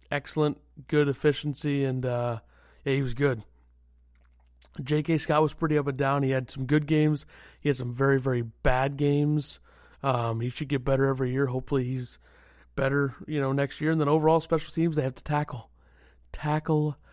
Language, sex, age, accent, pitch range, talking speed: English, male, 30-49, American, 120-150 Hz, 180 wpm